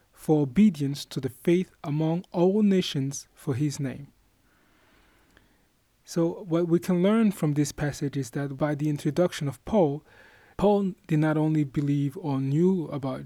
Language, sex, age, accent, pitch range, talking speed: English, male, 20-39, Nigerian, 145-180 Hz, 155 wpm